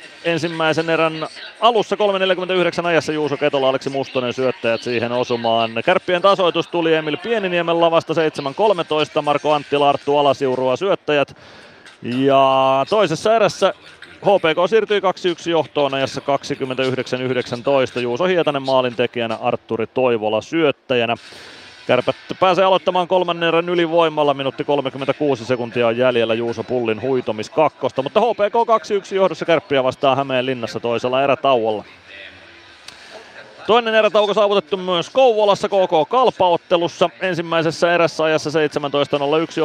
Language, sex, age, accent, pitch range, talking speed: Finnish, male, 30-49, native, 130-175 Hz, 105 wpm